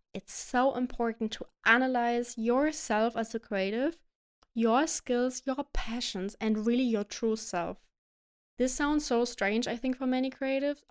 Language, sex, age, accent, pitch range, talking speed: English, female, 20-39, German, 205-235 Hz, 150 wpm